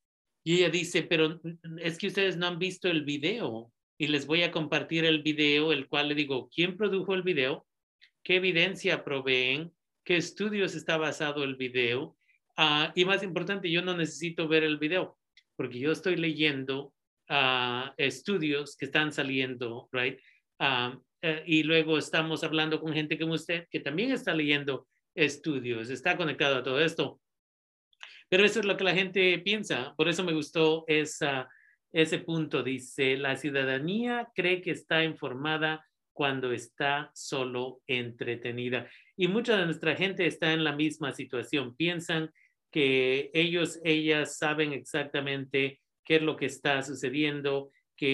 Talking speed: 155 wpm